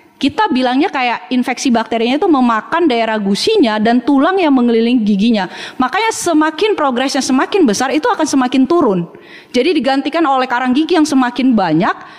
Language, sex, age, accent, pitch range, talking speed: Indonesian, female, 20-39, native, 215-290 Hz, 155 wpm